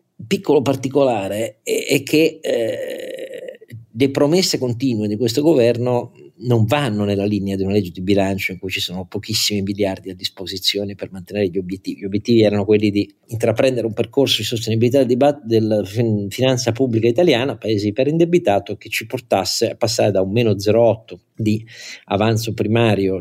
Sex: male